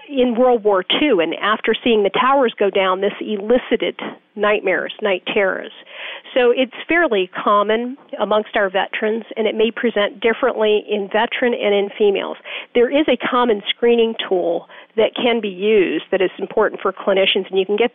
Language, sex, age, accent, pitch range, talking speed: English, female, 40-59, American, 190-240 Hz, 175 wpm